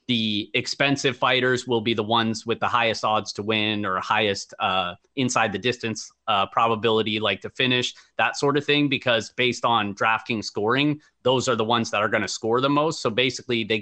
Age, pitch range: 30-49, 110-125 Hz